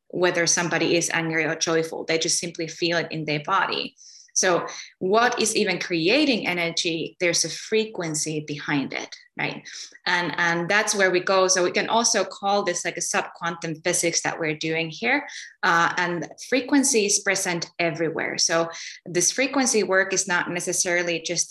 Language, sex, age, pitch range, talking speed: English, female, 20-39, 170-200 Hz, 165 wpm